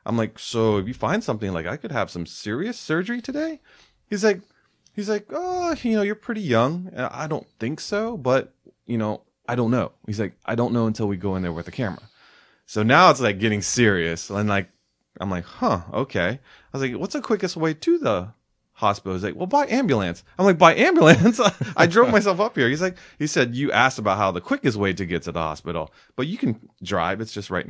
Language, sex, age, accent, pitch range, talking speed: English, male, 30-49, American, 95-150 Hz, 230 wpm